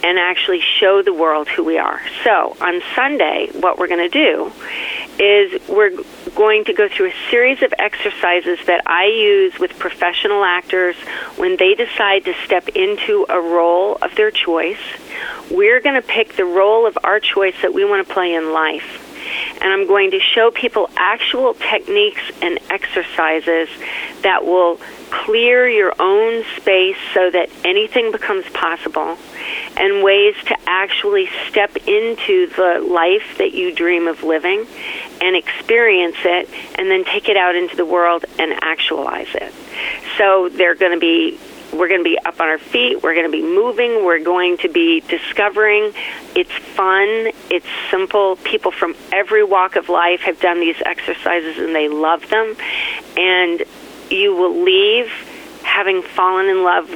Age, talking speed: 40-59, 160 wpm